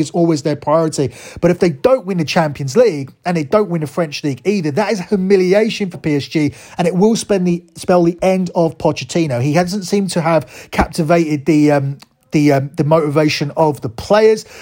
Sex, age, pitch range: male, 30-49, 150-185 Hz